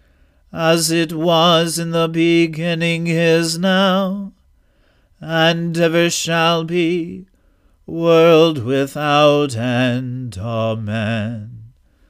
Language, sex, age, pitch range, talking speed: English, male, 40-59, 125-175 Hz, 80 wpm